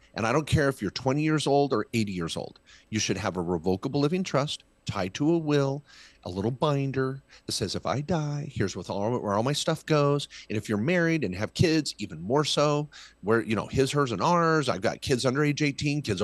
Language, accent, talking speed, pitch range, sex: English, American, 230 wpm, 105-150 Hz, male